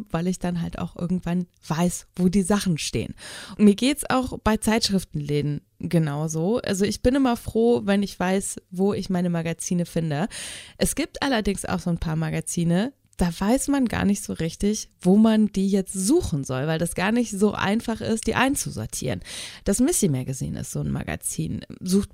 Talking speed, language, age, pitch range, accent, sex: 190 wpm, German, 20-39, 165-210 Hz, German, female